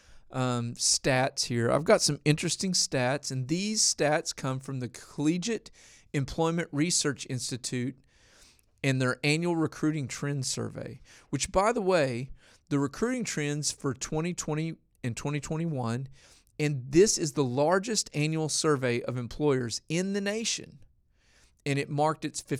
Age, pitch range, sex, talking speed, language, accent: 40-59, 130-165 Hz, male, 135 wpm, English, American